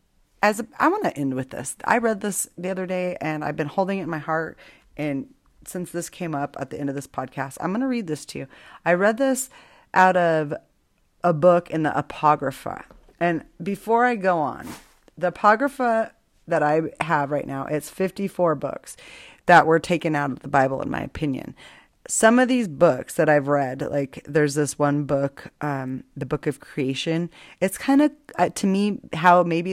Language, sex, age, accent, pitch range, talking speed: English, female, 30-49, American, 150-210 Hz, 200 wpm